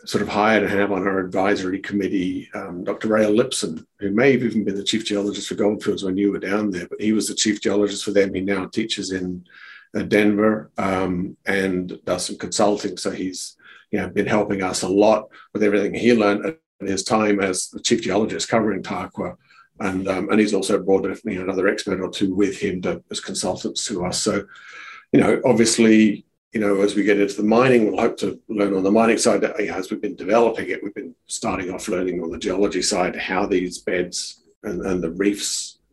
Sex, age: male, 50-69